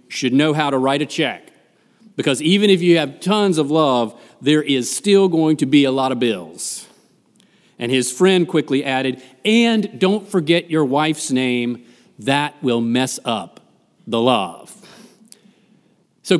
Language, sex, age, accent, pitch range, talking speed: English, male, 40-59, American, 120-165 Hz, 155 wpm